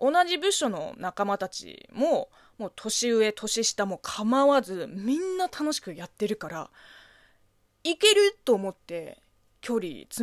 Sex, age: female, 20-39